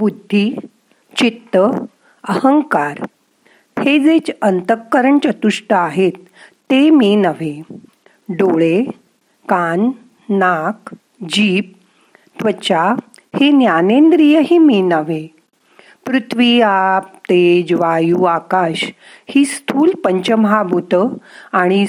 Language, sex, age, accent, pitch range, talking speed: Marathi, female, 50-69, native, 180-250 Hz, 80 wpm